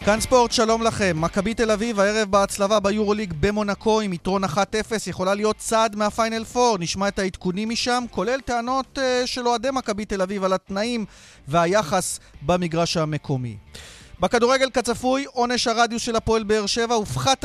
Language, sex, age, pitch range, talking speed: Hebrew, male, 30-49, 180-230 Hz, 155 wpm